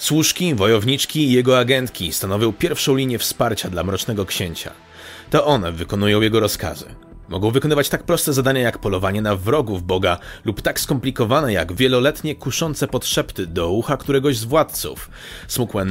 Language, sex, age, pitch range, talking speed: Polish, male, 30-49, 105-130 Hz, 150 wpm